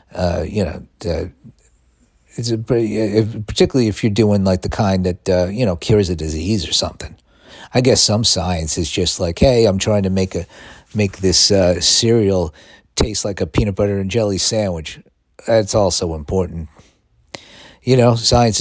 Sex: male